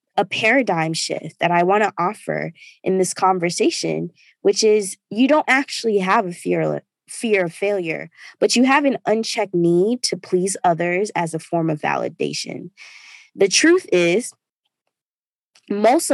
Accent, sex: American, female